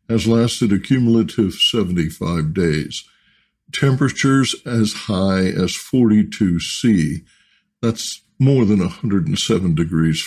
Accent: American